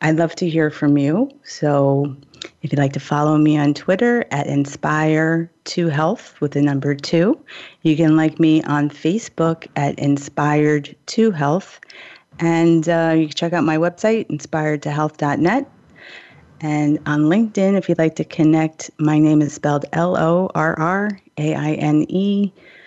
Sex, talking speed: female, 135 wpm